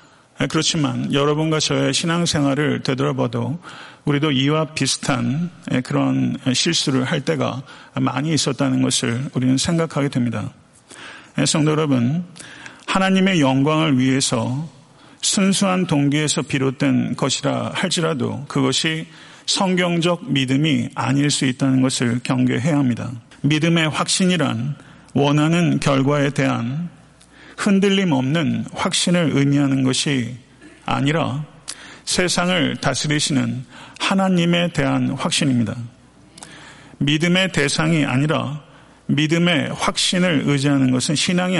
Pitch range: 135-165 Hz